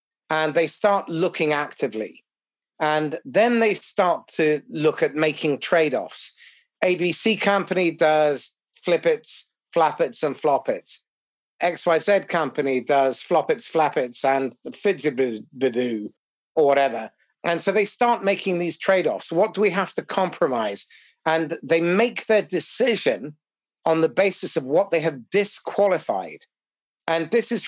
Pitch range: 145-195 Hz